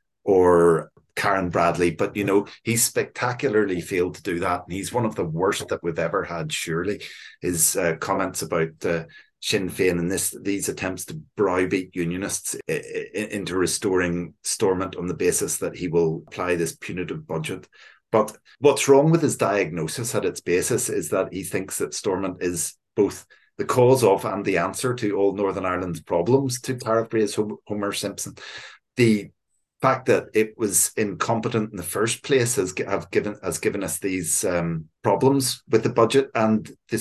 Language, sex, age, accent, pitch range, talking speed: English, male, 30-49, Irish, 95-125 Hz, 175 wpm